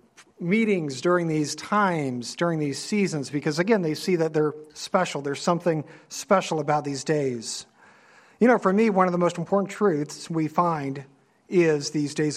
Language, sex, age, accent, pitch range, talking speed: English, male, 50-69, American, 150-185 Hz, 170 wpm